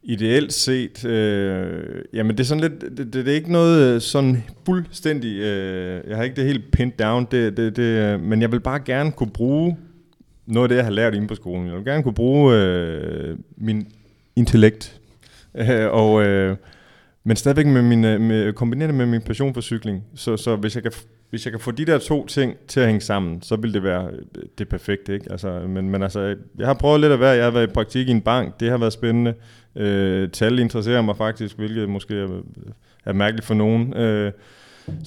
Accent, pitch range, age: native, 105-125 Hz, 30-49